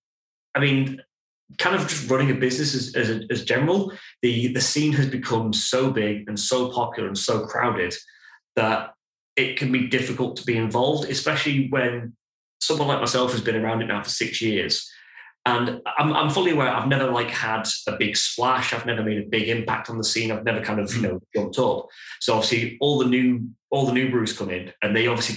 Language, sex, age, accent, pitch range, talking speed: English, male, 20-39, British, 105-125 Hz, 210 wpm